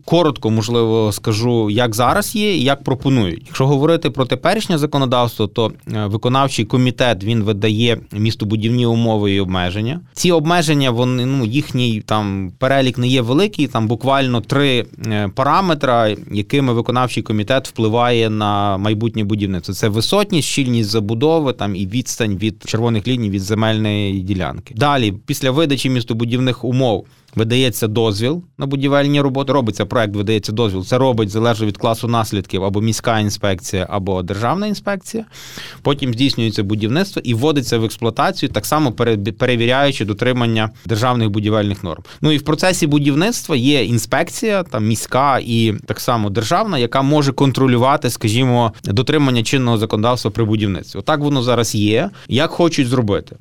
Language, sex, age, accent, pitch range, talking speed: Ukrainian, male, 20-39, native, 110-140 Hz, 140 wpm